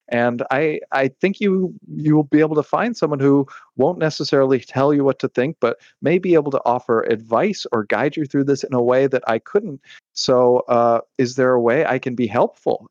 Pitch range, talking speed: 105-135 Hz, 225 wpm